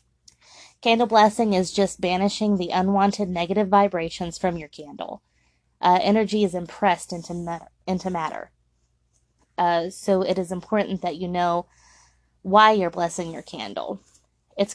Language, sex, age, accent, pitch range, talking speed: English, female, 20-39, American, 170-200 Hz, 140 wpm